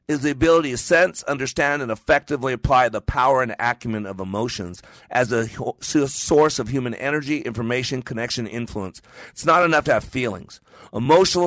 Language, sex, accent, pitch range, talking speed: English, male, American, 110-140 Hz, 160 wpm